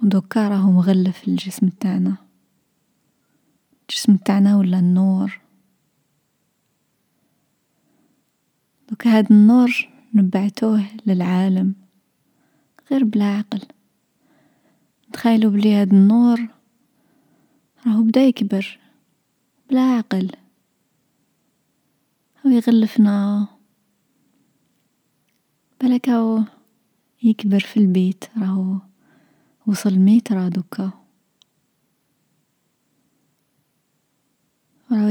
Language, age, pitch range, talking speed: Arabic, 20-39, 190-225 Hz, 65 wpm